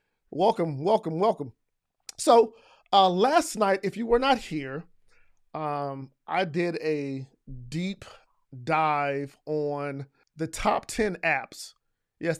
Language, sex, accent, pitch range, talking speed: English, male, American, 145-190 Hz, 115 wpm